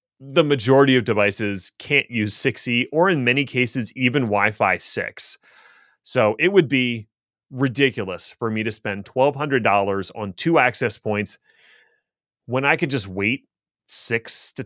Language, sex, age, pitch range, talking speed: English, male, 30-49, 105-140 Hz, 145 wpm